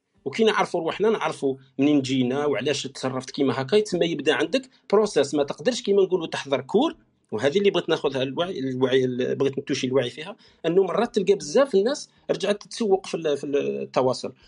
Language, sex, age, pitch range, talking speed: Arabic, male, 50-69, 140-200 Hz, 160 wpm